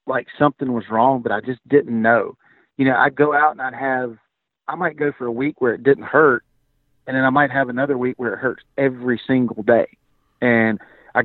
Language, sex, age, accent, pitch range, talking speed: English, male, 40-59, American, 110-135 Hz, 225 wpm